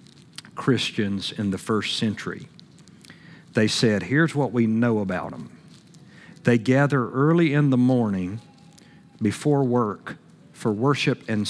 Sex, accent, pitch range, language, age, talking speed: male, American, 115-160 Hz, English, 50-69, 125 wpm